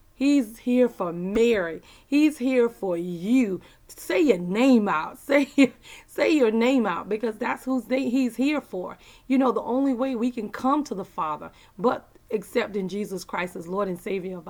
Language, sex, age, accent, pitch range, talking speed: English, female, 30-49, American, 190-250 Hz, 180 wpm